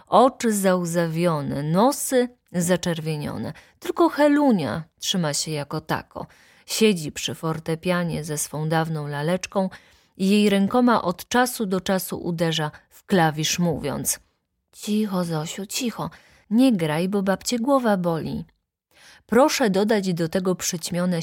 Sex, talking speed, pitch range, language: female, 120 wpm, 175-255 Hz, Polish